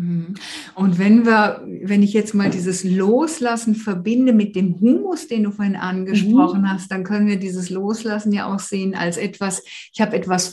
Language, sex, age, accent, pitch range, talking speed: German, female, 50-69, German, 180-215 Hz, 175 wpm